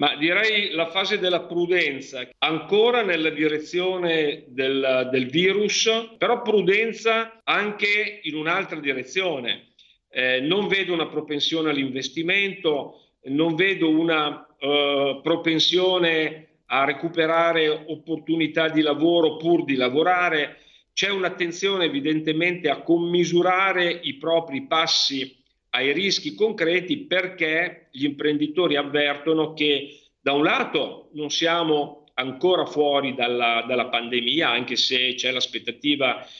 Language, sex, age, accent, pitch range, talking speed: Italian, male, 50-69, native, 140-175 Hz, 110 wpm